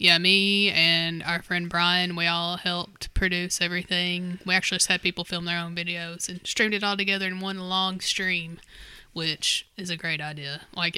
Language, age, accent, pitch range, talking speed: English, 10-29, American, 165-180 Hz, 190 wpm